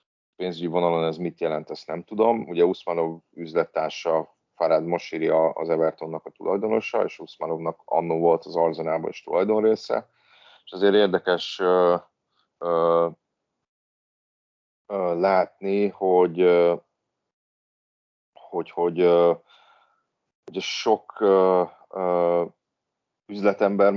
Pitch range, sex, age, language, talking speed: 85-100 Hz, male, 30-49, Hungarian, 110 wpm